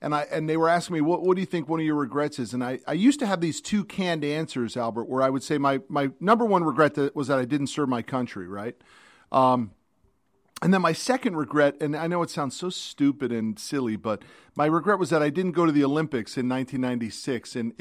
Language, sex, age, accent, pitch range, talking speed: English, male, 40-59, American, 125-170 Hz, 245 wpm